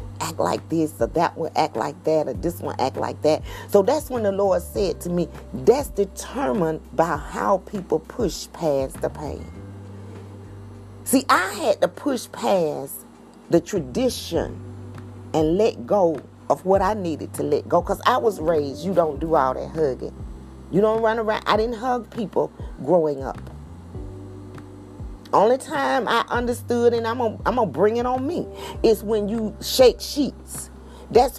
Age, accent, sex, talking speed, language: 40-59, American, female, 170 wpm, English